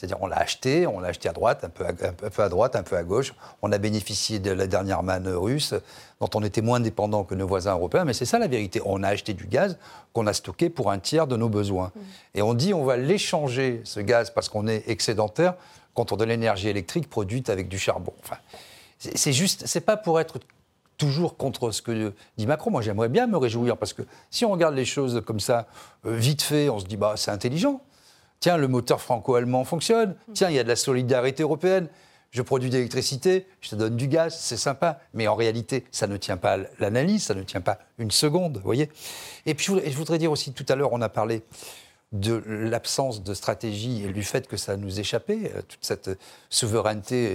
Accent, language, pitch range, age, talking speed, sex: French, French, 105-150 Hz, 50-69, 230 wpm, male